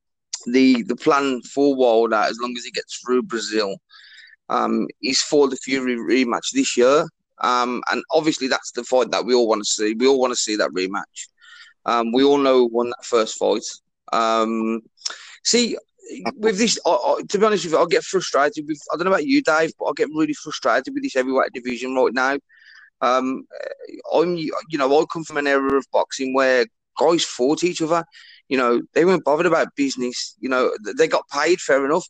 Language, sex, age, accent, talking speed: English, male, 20-39, British, 205 wpm